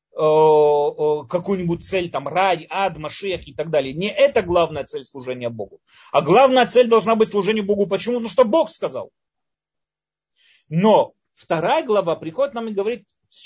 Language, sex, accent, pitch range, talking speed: Russian, male, native, 140-200 Hz, 155 wpm